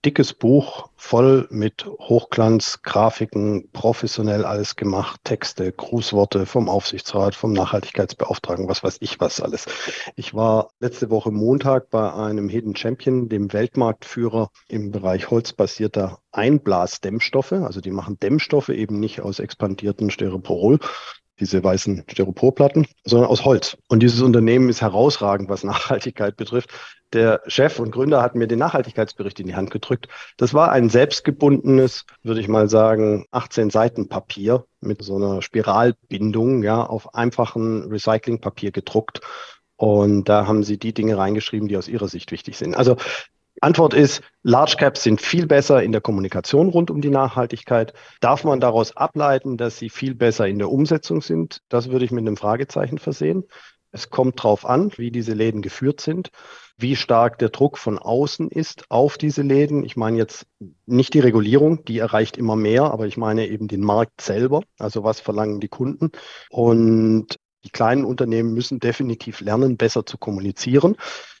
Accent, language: German, German